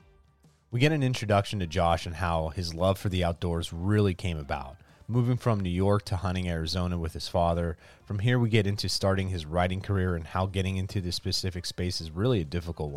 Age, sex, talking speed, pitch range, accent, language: 30-49, male, 215 wpm, 85-100 Hz, American, English